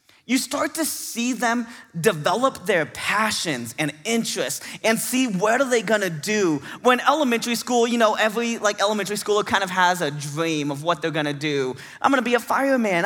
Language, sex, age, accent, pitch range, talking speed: English, male, 20-39, American, 180-255 Hz, 190 wpm